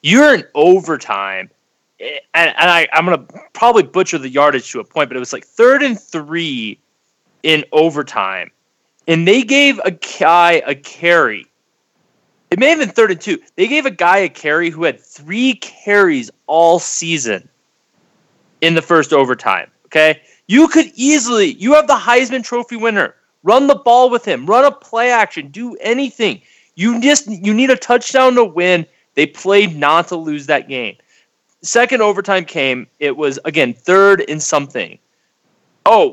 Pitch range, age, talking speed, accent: 150-235 Hz, 30-49, 165 wpm, American